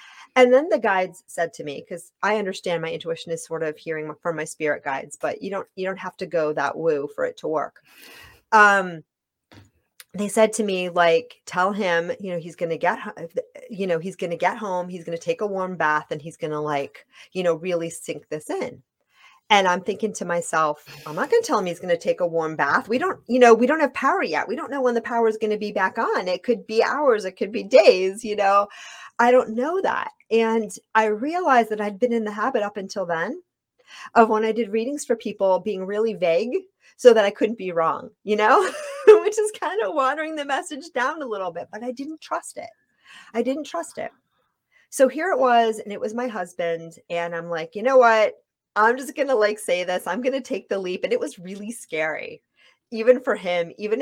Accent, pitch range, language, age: American, 175-250 Hz, English, 30-49